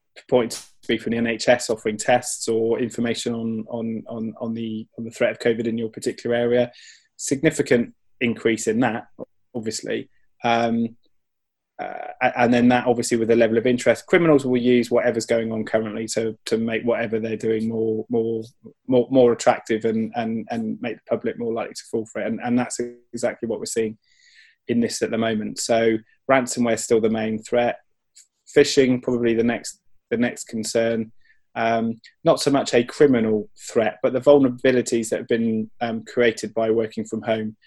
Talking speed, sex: 185 wpm, male